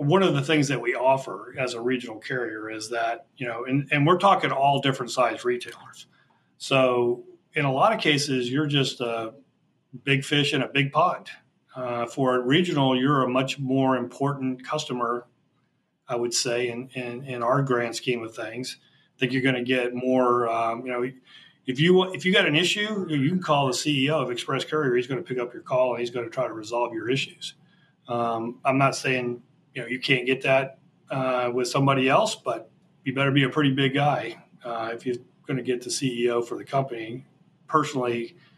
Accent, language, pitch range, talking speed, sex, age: American, English, 120-155 Hz, 210 wpm, male, 40-59